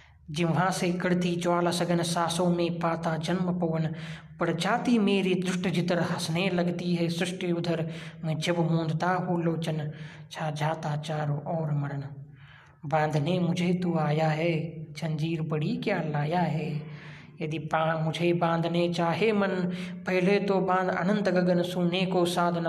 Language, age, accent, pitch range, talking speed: Marathi, 20-39, native, 160-180 Hz, 140 wpm